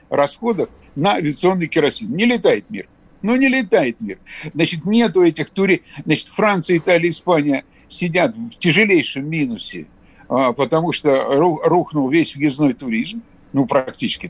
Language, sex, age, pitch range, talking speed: Russian, male, 60-79, 145-190 Hz, 130 wpm